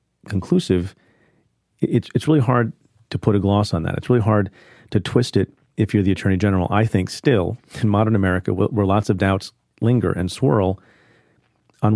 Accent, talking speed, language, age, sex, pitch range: American, 180 wpm, English, 40-59, male, 95-115 Hz